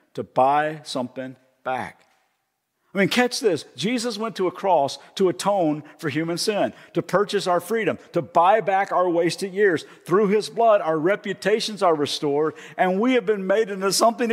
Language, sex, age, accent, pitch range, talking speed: English, male, 50-69, American, 170-225 Hz, 175 wpm